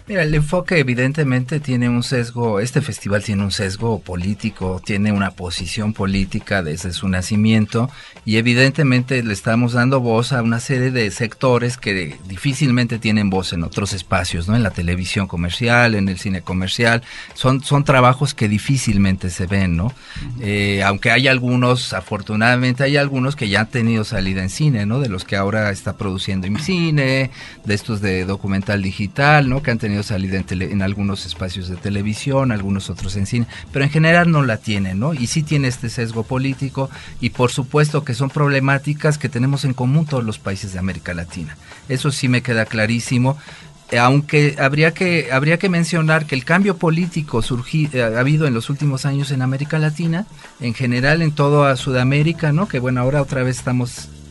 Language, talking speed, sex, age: Spanish, 180 wpm, male, 40-59